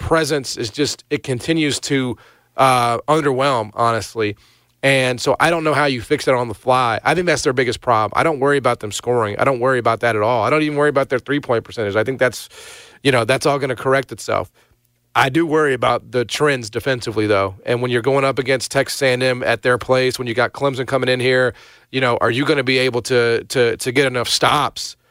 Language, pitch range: English, 115-140 Hz